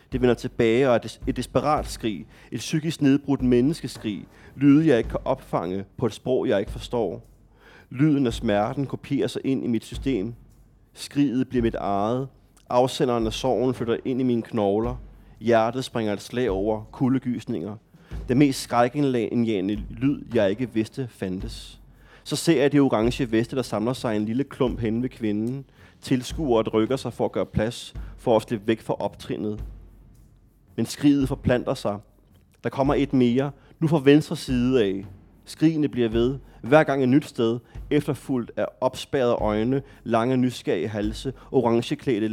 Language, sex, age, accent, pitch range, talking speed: Danish, male, 30-49, native, 110-135 Hz, 170 wpm